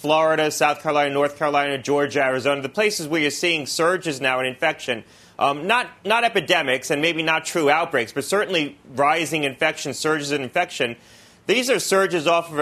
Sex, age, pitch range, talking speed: male, 30-49, 140-175 Hz, 180 wpm